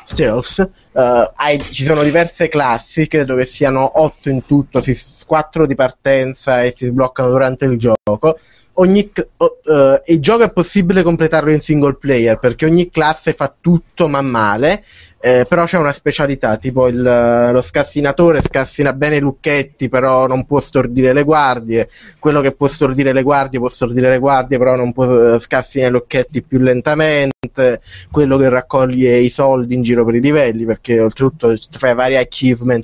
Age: 20-39